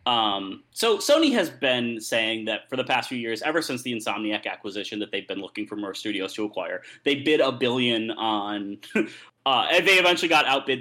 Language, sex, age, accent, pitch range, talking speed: English, male, 30-49, American, 110-135 Hz, 205 wpm